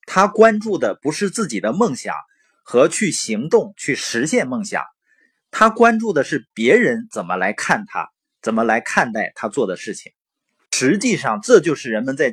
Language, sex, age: Chinese, male, 30-49